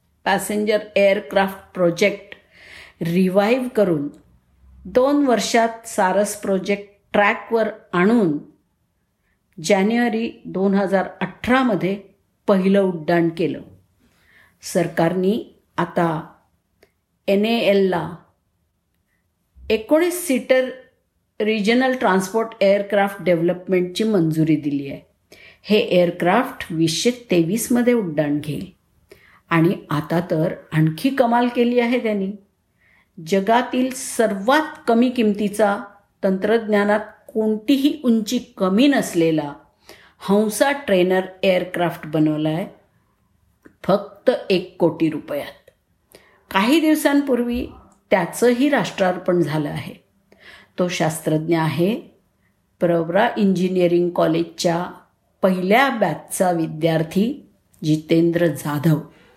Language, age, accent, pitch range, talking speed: Marathi, 50-69, native, 170-225 Hz, 85 wpm